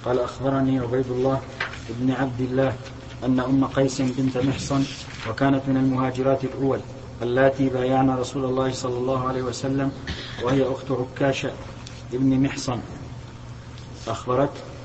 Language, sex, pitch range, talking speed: Arabic, male, 130-135 Hz, 120 wpm